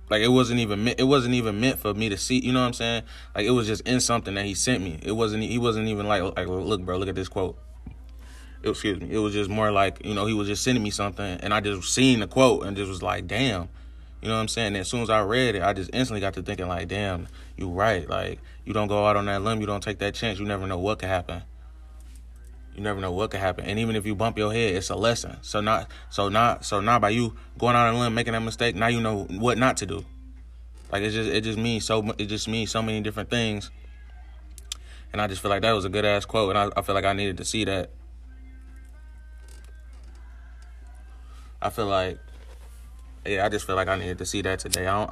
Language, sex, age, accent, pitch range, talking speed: English, male, 20-39, American, 65-110 Hz, 260 wpm